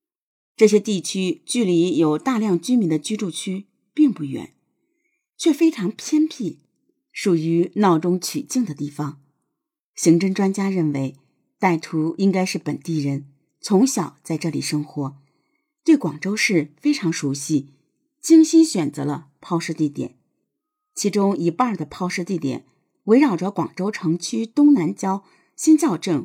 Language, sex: Chinese, female